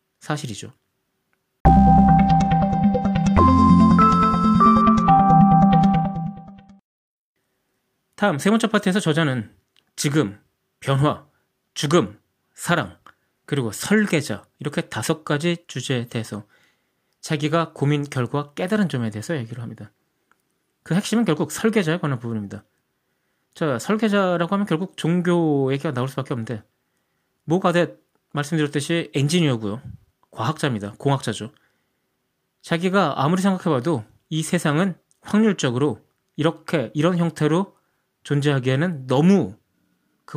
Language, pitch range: Korean, 120-175 Hz